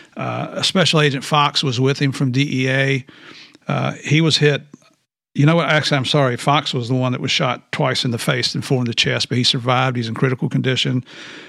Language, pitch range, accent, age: English, 130-145 Hz, American, 50-69